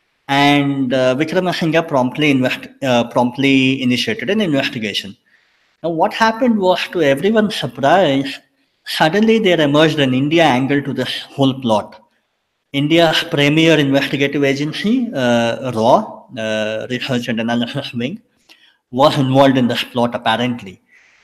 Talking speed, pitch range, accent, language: 120 wpm, 135-175 Hz, Indian, English